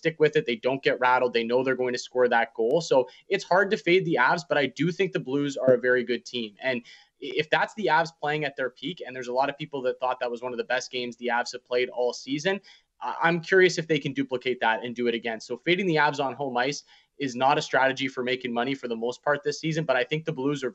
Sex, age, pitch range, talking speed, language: male, 20-39, 120-145 Hz, 285 wpm, English